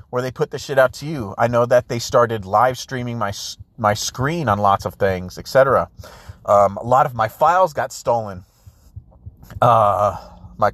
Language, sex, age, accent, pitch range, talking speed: English, male, 30-49, American, 100-140 Hz, 185 wpm